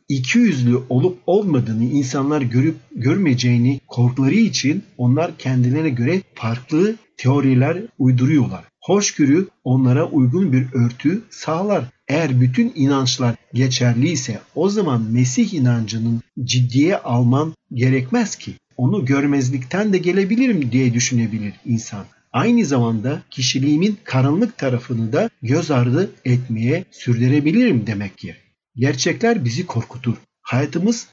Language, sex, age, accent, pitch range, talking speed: Turkish, male, 50-69, native, 125-160 Hz, 110 wpm